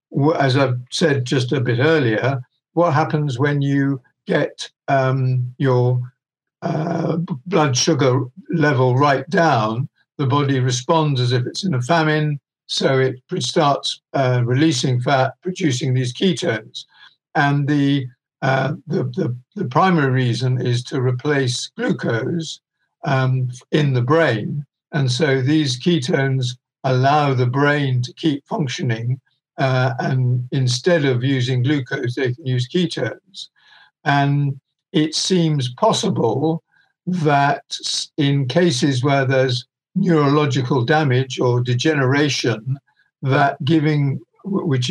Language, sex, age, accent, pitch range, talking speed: English, male, 60-79, British, 130-160 Hz, 120 wpm